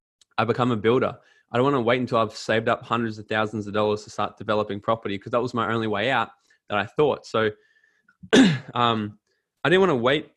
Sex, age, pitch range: male, 20-39, 110-135 Hz